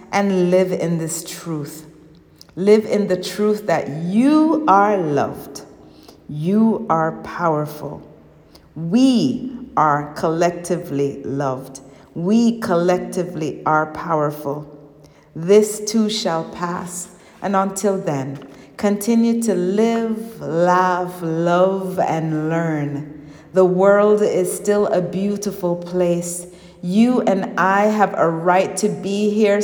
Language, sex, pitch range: English, female, 160-200 Hz